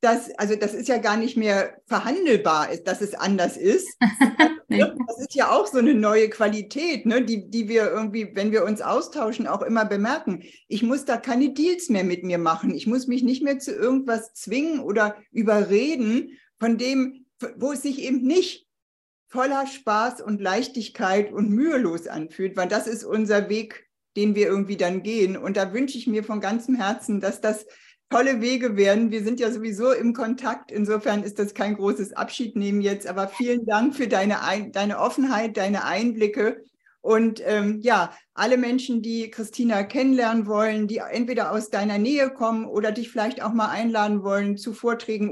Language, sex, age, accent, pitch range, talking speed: German, female, 50-69, German, 205-245 Hz, 175 wpm